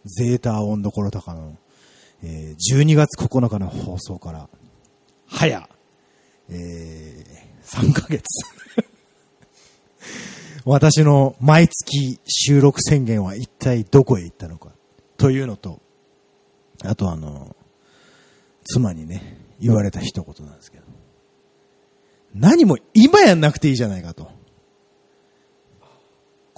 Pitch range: 105-170 Hz